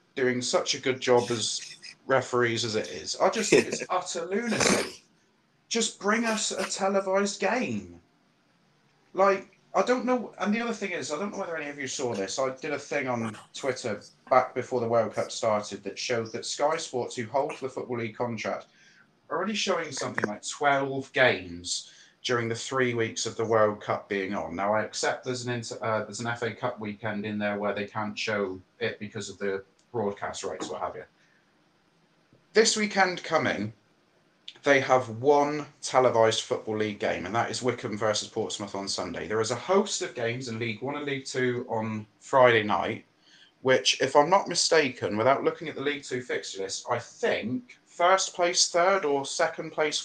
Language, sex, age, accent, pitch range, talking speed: English, male, 30-49, British, 110-170 Hz, 195 wpm